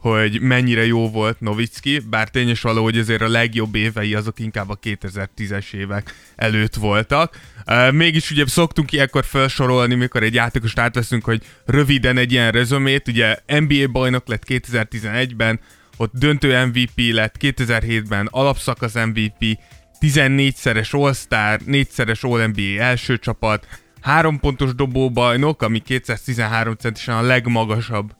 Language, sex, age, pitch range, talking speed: Hungarian, male, 20-39, 110-135 Hz, 130 wpm